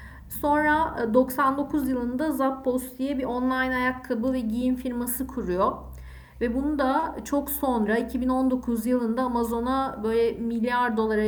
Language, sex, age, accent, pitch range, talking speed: Turkish, female, 50-69, native, 210-255 Hz, 120 wpm